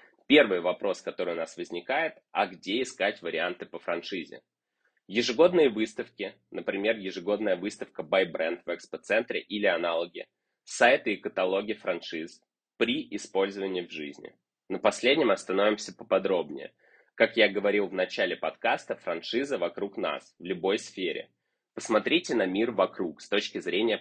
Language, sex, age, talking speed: Russian, male, 20-39, 135 wpm